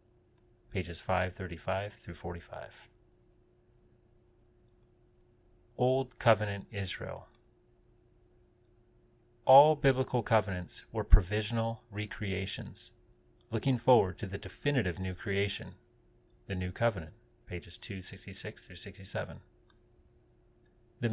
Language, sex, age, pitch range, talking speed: English, male, 30-49, 95-120 Hz, 80 wpm